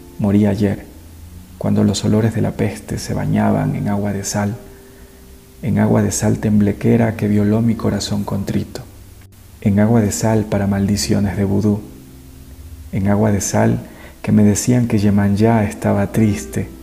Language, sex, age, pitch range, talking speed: Spanish, male, 40-59, 95-110 Hz, 155 wpm